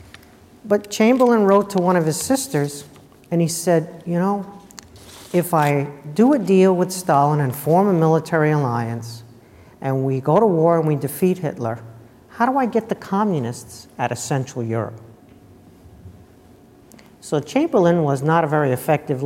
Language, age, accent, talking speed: English, 50-69, American, 160 wpm